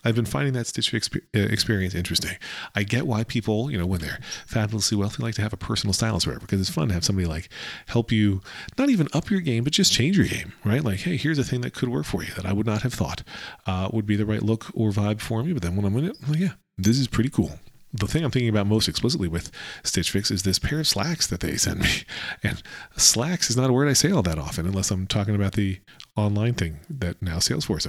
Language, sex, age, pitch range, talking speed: English, male, 40-59, 95-120 Hz, 270 wpm